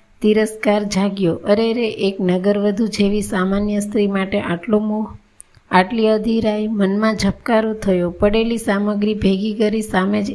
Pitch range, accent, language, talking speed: 195-220 Hz, native, Gujarati, 85 wpm